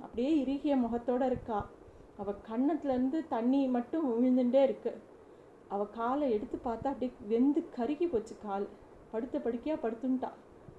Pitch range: 215-265 Hz